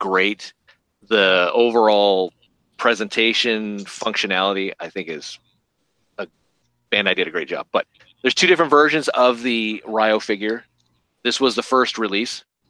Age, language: 30-49, English